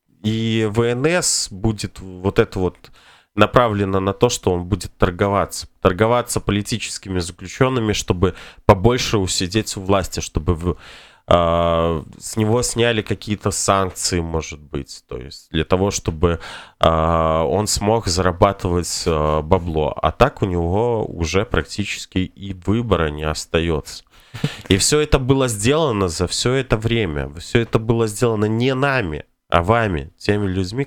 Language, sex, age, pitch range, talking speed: Russian, male, 20-39, 85-115 Hz, 135 wpm